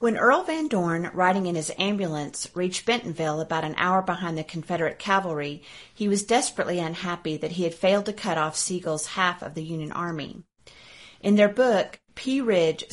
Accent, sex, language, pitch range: American, female, English, 160-205 Hz